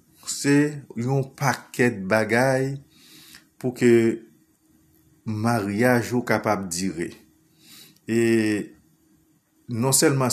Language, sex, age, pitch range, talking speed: English, male, 50-69, 110-125 Hz, 100 wpm